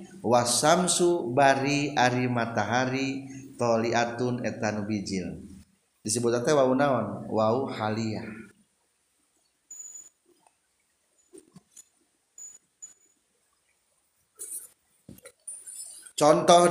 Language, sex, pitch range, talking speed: Indonesian, male, 125-185 Hz, 50 wpm